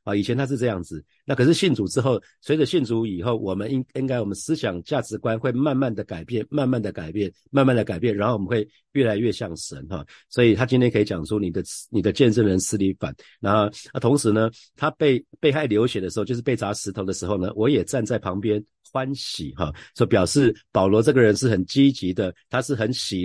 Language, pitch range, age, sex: Chinese, 100-125 Hz, 50-69, male